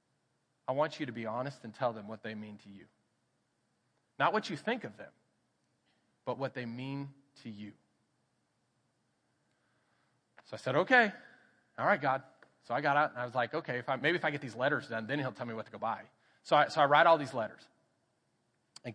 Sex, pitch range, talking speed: male, 115-140 Hz, 215 wpm